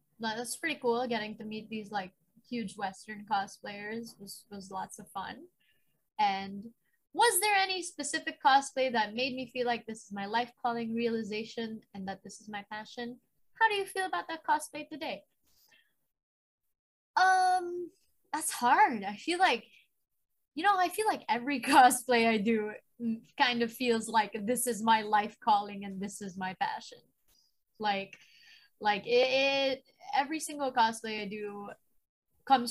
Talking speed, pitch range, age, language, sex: 155 wpm, 215-290 Hz, 20-39, English, female